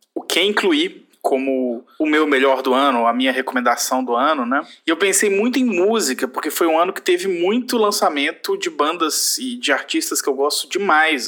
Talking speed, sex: 200 wpm, male